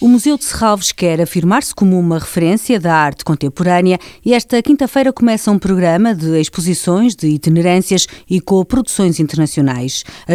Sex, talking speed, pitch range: female, 150 wpm, 160-205 Hz